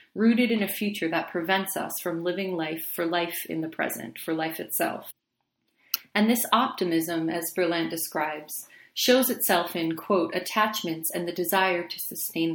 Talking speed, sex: 165 wpm, female